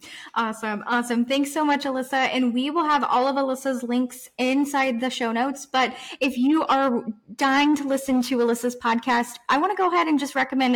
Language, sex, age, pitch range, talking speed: English, female, 10-29, 215-270 Hz, 200 wpm